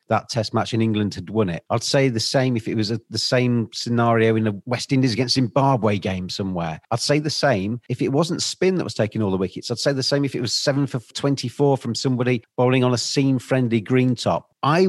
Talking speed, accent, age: 240 wpm, British, 40-59